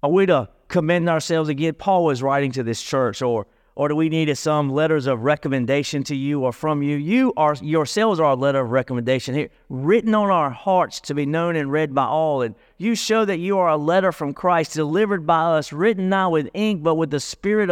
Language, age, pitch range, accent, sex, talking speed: English, 40-59, 145-185 Hz, American, male, 225 wpm